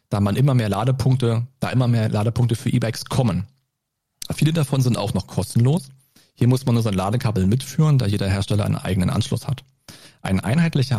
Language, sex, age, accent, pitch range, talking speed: German, male, 40-59, German, 100-135 Hz, 180 wpm